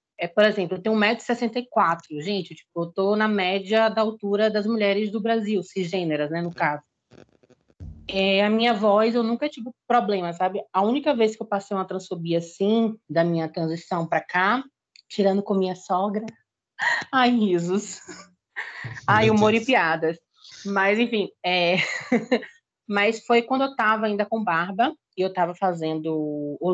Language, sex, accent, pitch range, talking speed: Portuguese, female, Brazilian, 185-230 Hz, 160 wpm